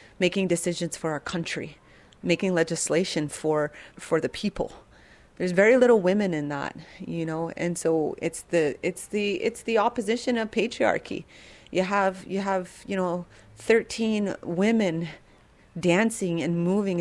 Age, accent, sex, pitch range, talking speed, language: 30-49, American, female, 155-185 Hz, 145 wpm, English